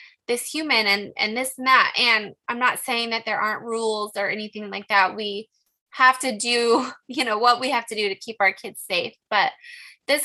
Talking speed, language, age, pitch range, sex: 215 wpm, English, 20-39, 215-265 Hz, female